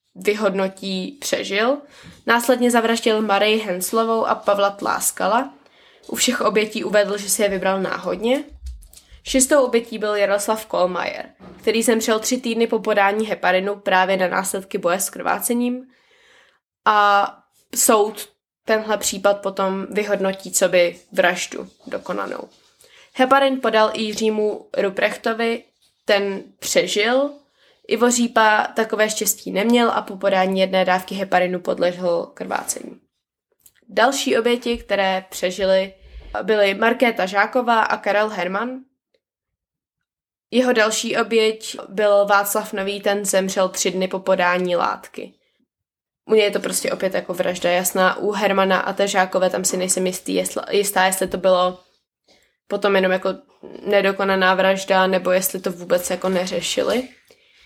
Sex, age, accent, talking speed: female, 20-39, native, 125 wpm